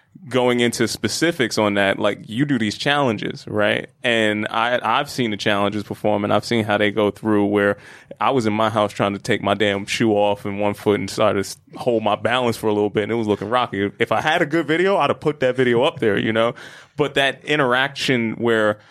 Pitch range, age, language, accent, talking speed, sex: 105-125 Hz, 20-39, English, American, 240 wpm, male